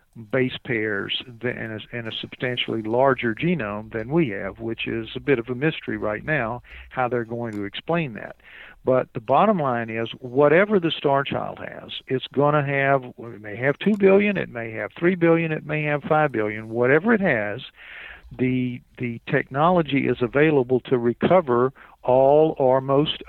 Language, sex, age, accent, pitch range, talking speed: English, male, 50-69, American, 115-150 Hz, 175 wpm